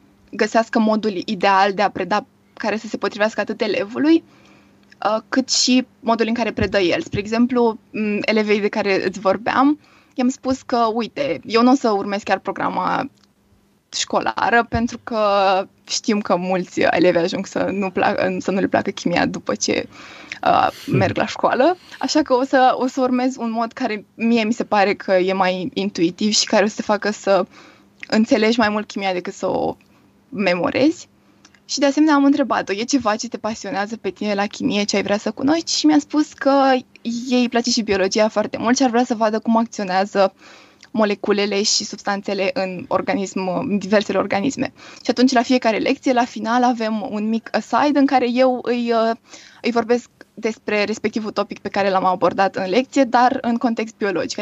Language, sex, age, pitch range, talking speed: Romanian, female, 20-39, 205-245 Hz, 185 wpm